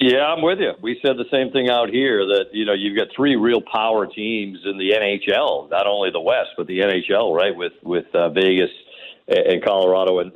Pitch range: 105-165 Hz